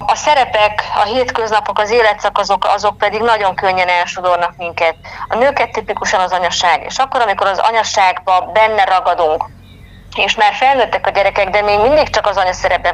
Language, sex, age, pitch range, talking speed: Hungarian, female, 30-49, 175-210 Hz, 160 wpm